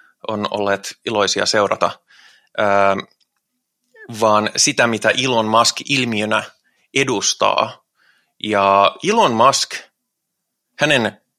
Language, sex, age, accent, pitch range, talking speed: Finnish, male, 30-49, native, 105-145 Hz, 80 wpm